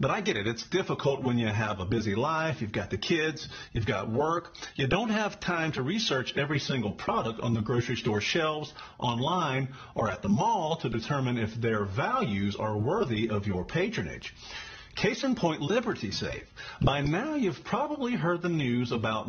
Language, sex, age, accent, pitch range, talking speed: English, male, 50-69, American, 110-150 Hz, 190 wpm